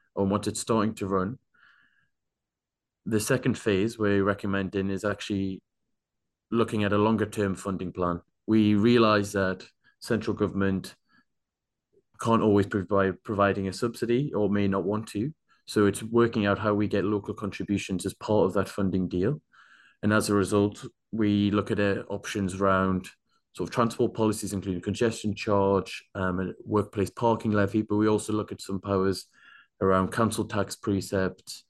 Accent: British